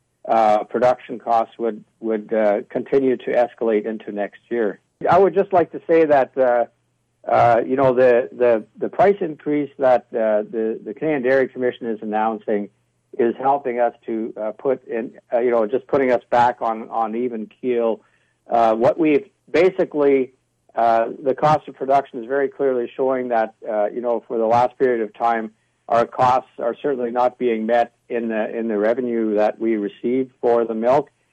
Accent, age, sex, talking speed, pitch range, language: American, 60-79, male, 185 wpm, 115-135 Hz, English